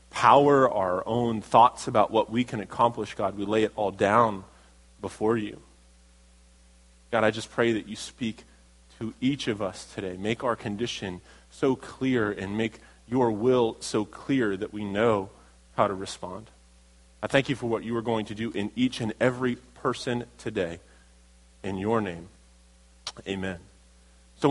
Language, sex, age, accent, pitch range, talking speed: English, male, 30-49, American, 105-150 Hz, 165 wpm